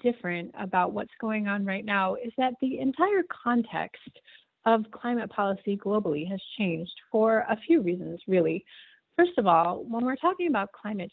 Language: English